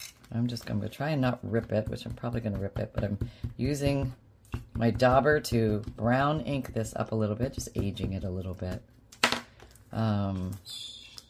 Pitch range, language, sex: 110-125 Hz, English, female